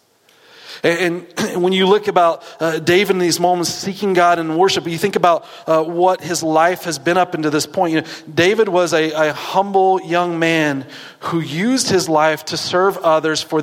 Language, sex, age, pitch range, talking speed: English, male, 40-59, 135-175 Hz, 185 wpm